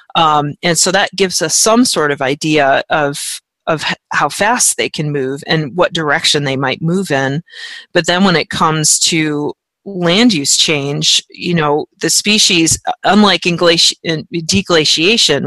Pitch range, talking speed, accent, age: 145-175 Hz, 165 wpm, American, 40-59